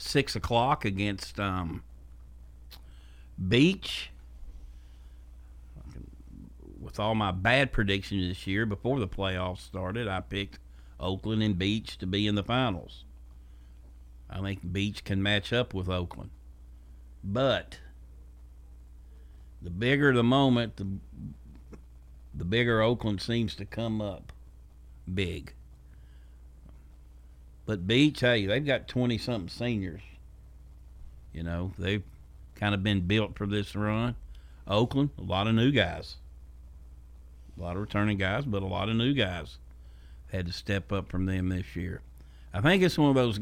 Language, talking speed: English, 135 wpm